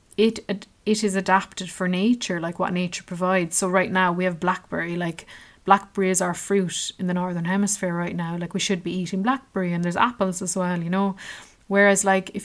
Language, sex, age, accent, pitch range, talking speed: English, female, 30-49, Irish, 180-210 Hz, 205 wpm